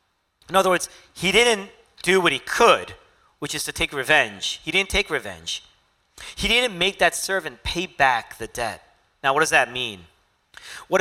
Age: 40-59